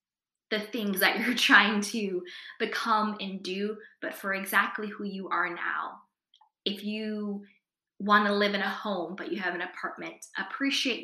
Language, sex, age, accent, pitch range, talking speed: English, female, 20-39, American, 185-215 Hz, 165 wpm